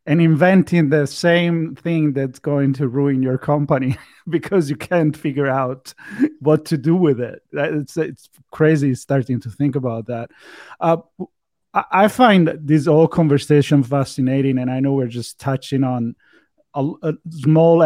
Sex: male